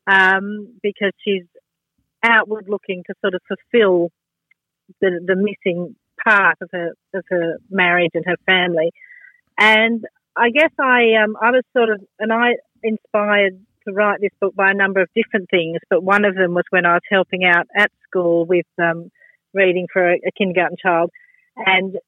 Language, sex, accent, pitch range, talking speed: English, female, Australian, 185-220 Hz, 175 wpm